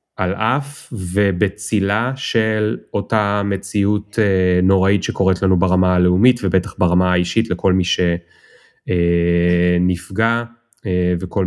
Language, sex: Hebrew, male